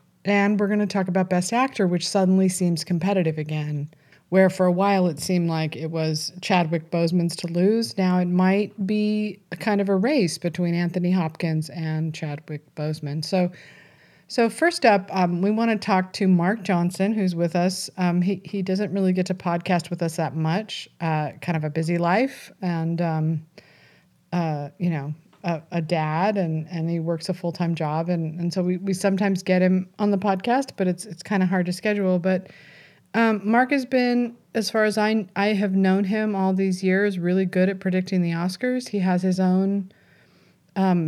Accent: American